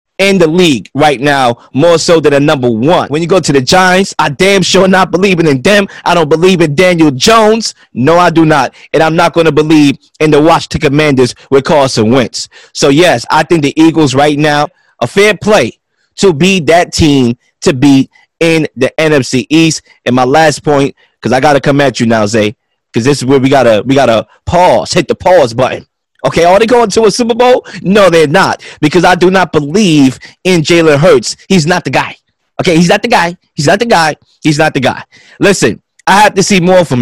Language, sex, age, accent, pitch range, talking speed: English, male, 20-39, American, 145-190 Hz, 225 wpm